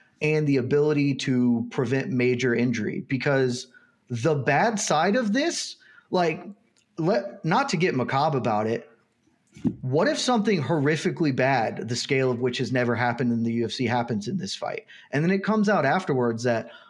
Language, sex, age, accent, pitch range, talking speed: English, male, 30-49, American, 130-190 Hz, 165 wpm